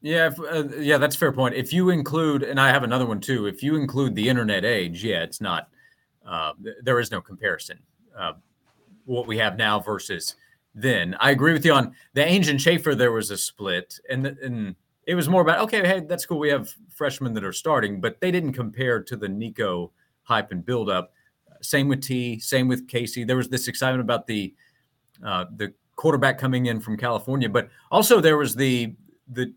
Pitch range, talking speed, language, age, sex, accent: 120-150 Hz, 210 wpm, English, 30-49, male, American